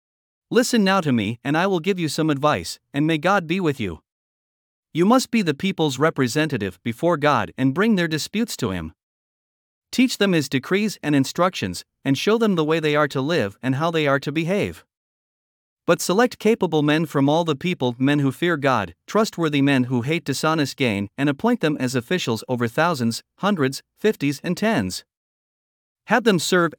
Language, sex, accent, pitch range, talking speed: English, male, American, 135-190 Hz, 190 wpm